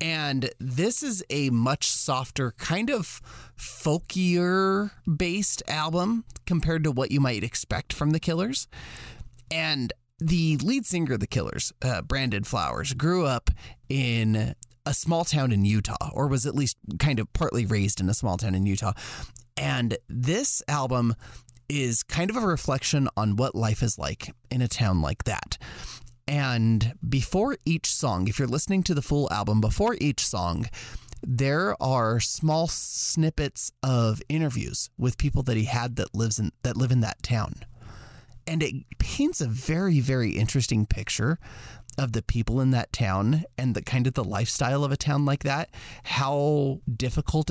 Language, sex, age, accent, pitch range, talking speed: English, male, 30-49, American, 115-150 Hz, 165 wpm